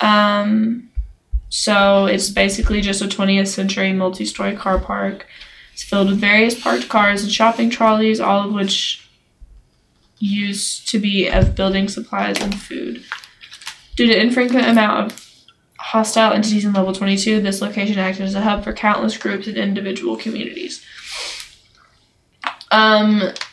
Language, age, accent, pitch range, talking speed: English, 10-29, American, 195-220 Hz, 140 wpm